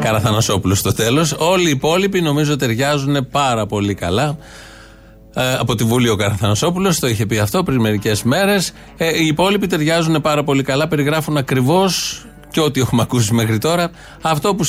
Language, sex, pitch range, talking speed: Greek, male, 125-155 Hz, 170 wpm